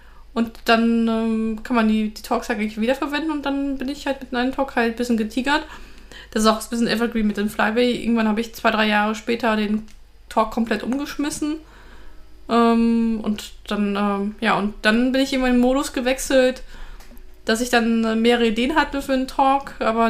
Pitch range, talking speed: 225-255 Hz, 200 wpm